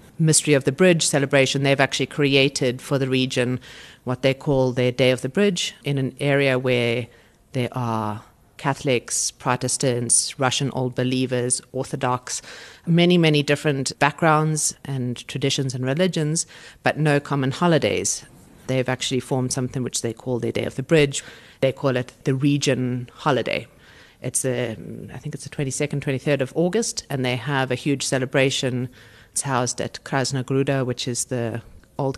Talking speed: 160 wpm